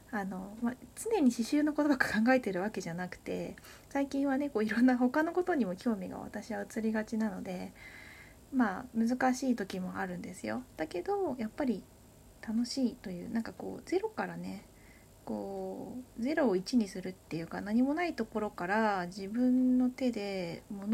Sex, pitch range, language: female, 200-265 Hz, Japanese